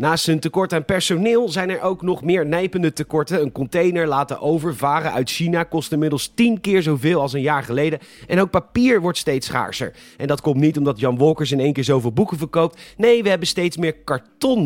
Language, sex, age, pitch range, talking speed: Dutch, male, 30-49, 140-180 Hz, 215 wpm